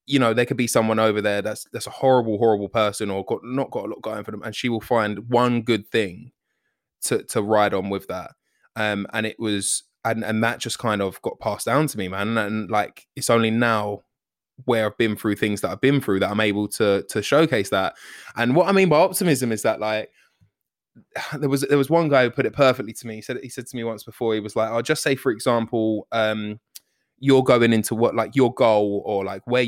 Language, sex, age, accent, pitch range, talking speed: English, male, 20-39, British, 105-125 Hz, 245 wpm